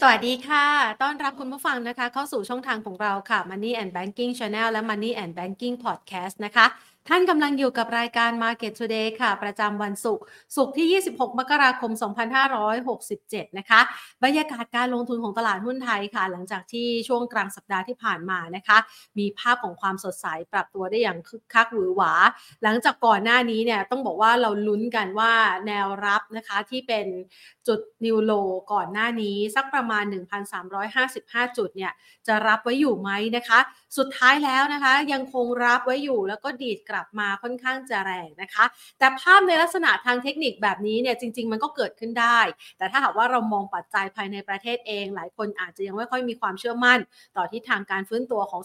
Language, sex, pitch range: Thai, female, 205-250 Hz